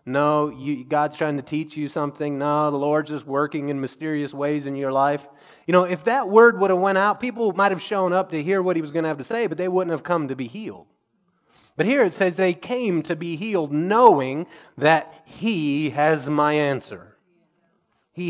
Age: 30-49